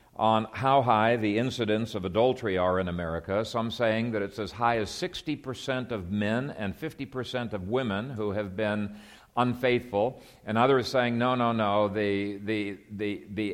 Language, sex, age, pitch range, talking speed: English, male, 50-69, 105-135 Hz, 170 wpm